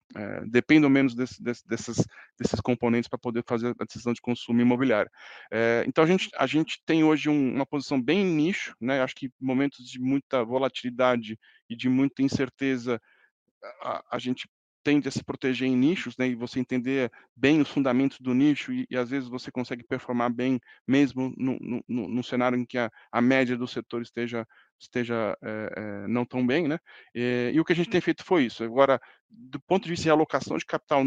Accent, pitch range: Brazilian, 120-145 Hz